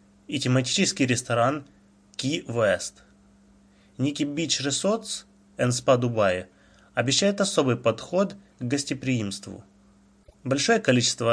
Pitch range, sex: 100-135 Hz, male